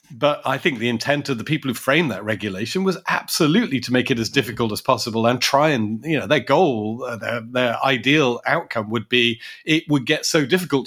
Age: 40-59